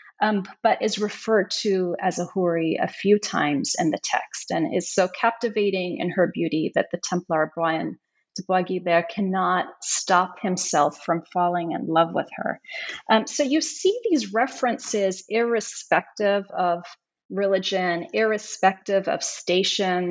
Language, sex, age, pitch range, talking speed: English, female, 30-49, 180-235 Hz, 145 wpm